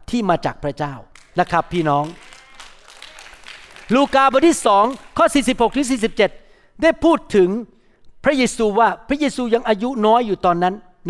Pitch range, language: 190-260 Hz, Thai